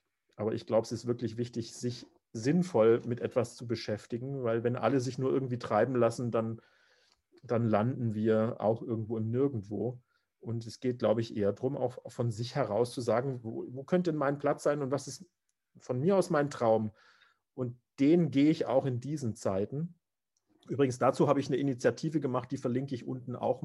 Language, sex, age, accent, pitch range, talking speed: English, male, 40-59, German, 110-135 Hz, 195 wpm